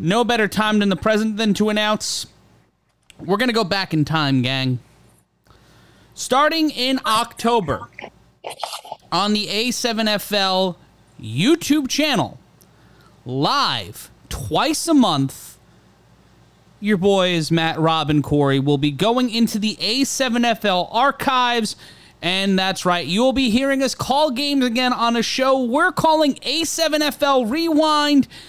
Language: English